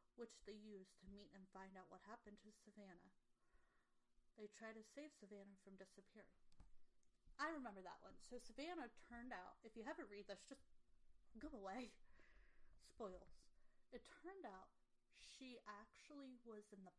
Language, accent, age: English, American, 30-49